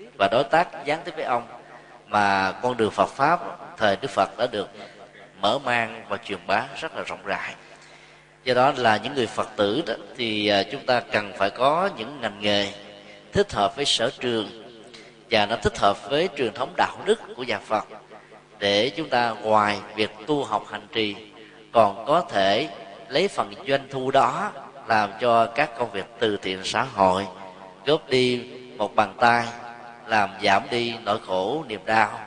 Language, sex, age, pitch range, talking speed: Vietnamese, male, 20-39, 100-130 Hz, 180 wpm